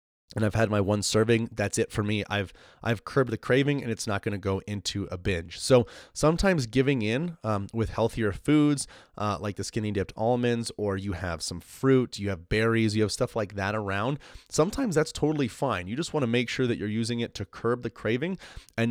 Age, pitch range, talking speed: 20-39, 100-120 Hz, 225 wpm